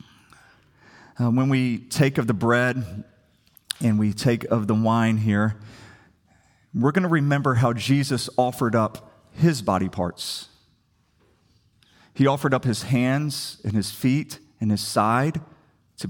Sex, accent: male, American